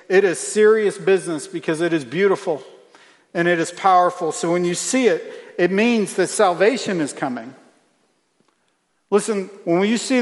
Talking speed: 160 wpm